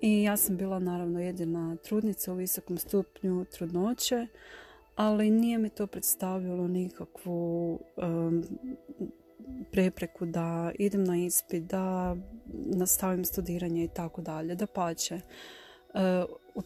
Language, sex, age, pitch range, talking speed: Croatian, female, 30-49, 175-205 Hz, 110 wpm